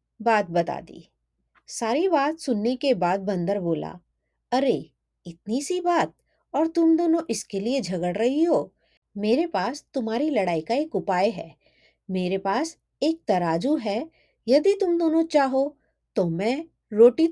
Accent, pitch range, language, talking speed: native, 200-290 Hz, Hindi, 85 wpm